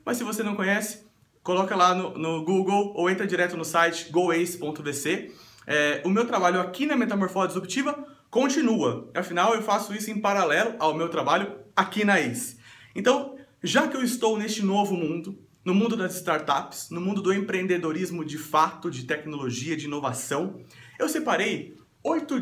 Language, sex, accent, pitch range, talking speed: Portuguese, male, Brazilian, 175-225 Hz, 165 wpm